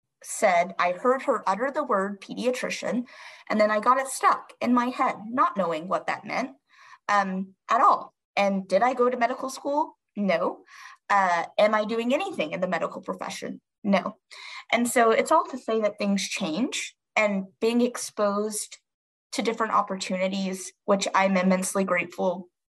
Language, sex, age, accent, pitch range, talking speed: English, female, 20-39, American, 195-255 Hz, 165 wpm